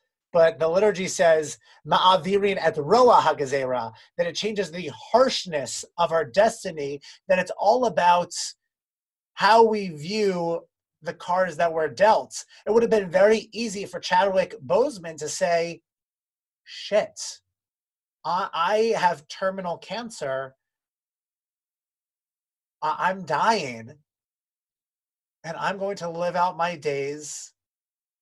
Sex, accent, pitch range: male, American, 145-185 Hz